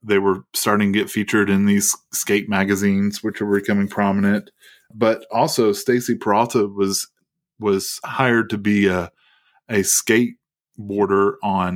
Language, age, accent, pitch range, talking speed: English, 20-39, American, 95-110 Hz, 140 wpm